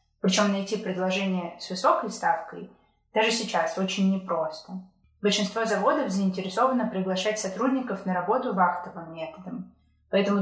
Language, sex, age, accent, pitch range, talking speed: Russian, female, 20-39, native, 185-220 Hz, 115 wpm